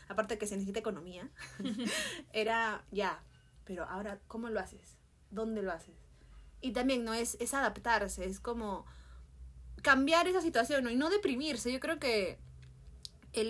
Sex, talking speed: female, 155 wpm